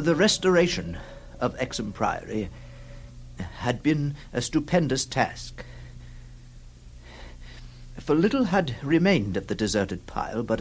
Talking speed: 105 wpm